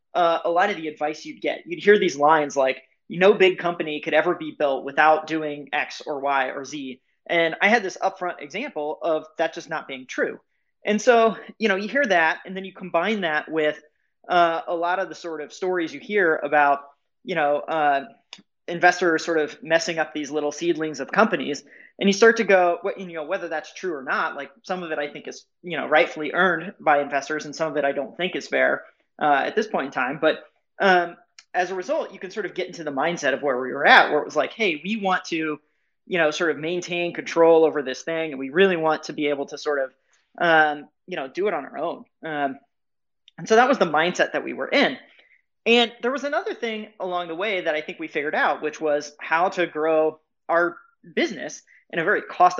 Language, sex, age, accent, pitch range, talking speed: English, male, 30-49, American, 150-185 Hz, 235 wpm